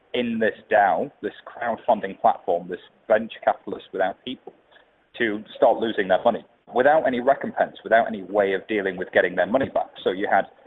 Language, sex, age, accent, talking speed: English, male, 30-49, British, 180 wpm